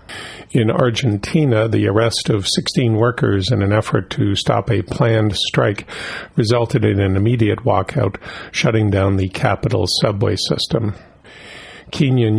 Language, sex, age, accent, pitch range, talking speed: English, male, 50-69, American, 100-120 Hz, 130 wpm